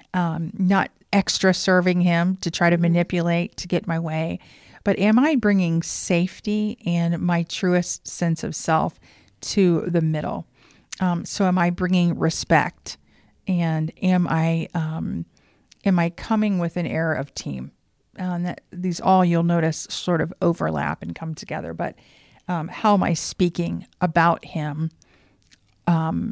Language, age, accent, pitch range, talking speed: English, 50-69, American, 160-185 Hz, 155 wpm